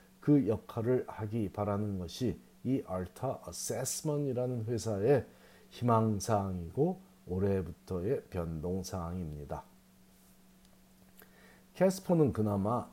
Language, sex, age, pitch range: Korean, male, 40-59, 100-140 Hz